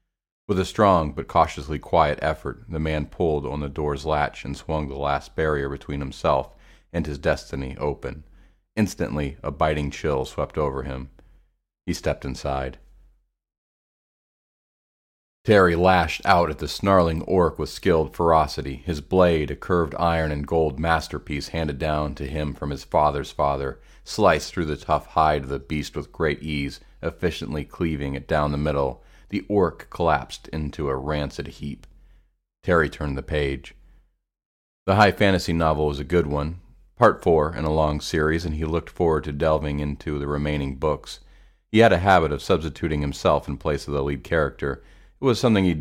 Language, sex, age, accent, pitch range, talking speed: English, male, 40-59, American, 70-85 Hz, 170 wpm